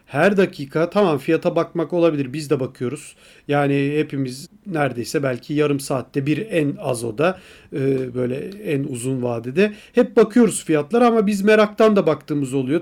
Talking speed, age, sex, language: 150 wpm, 40-59, male, Turkish